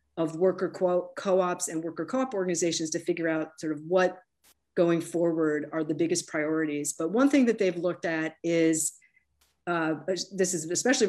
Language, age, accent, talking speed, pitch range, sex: English, 40-59, American, 170 wpm, 155-180 Hz, female